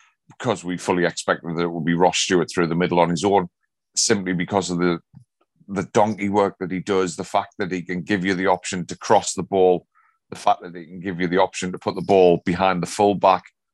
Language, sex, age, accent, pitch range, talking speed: English, male, 30-49, British, 90-100 Hz, 240 wpm